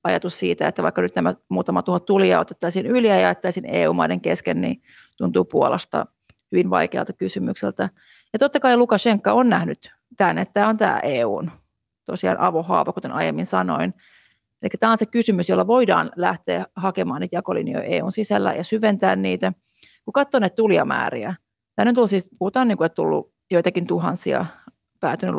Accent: native